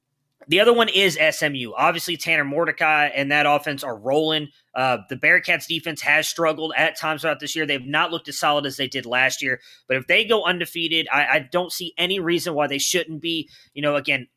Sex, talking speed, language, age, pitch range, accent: male, 215 wpm, English, 20-39, 145-180 Hz, American